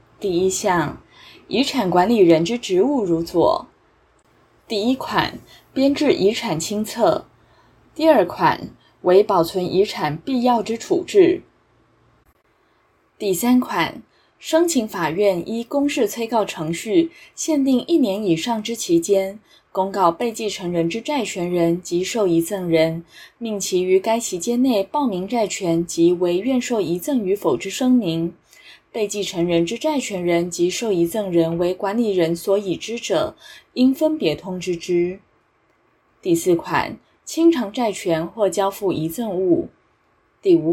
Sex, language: female, Chinese